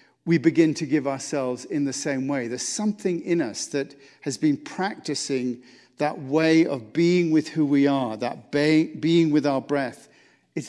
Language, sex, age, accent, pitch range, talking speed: English, male, 50-69, British, 140-185 Hz, 175 wpm